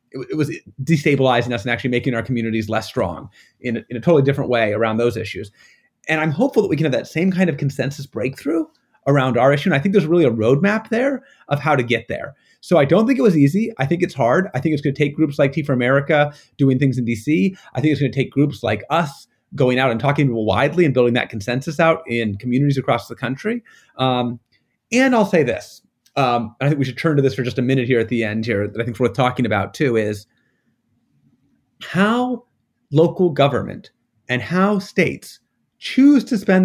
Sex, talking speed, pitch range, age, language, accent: male, 230 wpm, 125-185 Hz, 30-49, English, American